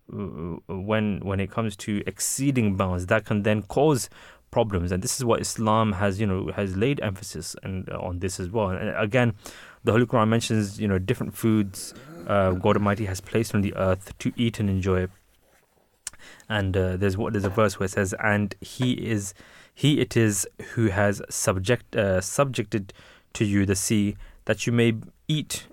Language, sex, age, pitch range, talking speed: English, male, 20-39, 95-115 Hz, 185 wpm